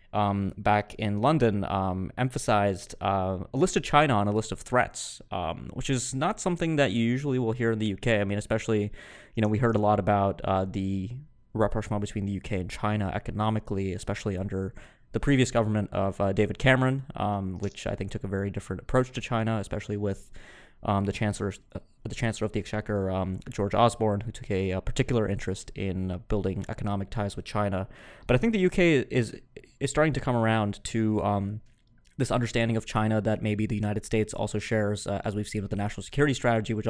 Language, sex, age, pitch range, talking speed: English, male, 20-39, 100-115 Hz, 210 wpm